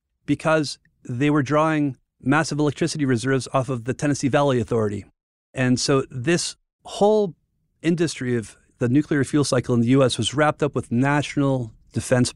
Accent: American